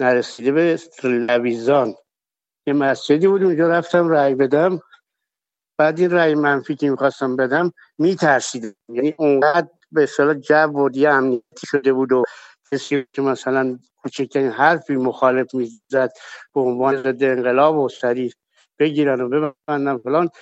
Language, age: Persian, 60-79